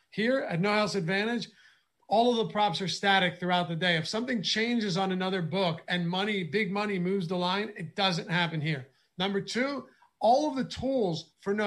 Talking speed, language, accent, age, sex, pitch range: 200 wpm, English, American, 40-59, male, 175-215 Hz